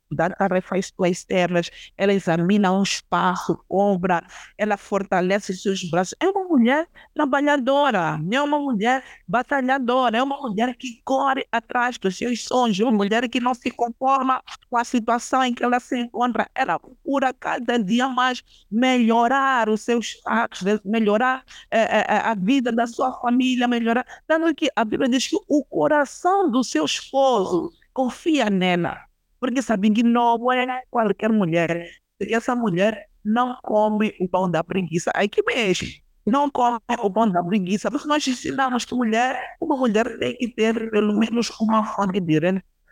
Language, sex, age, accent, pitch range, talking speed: Portuguese, female, 50-69, Brazilian, 205-260 Hz, 160 wpm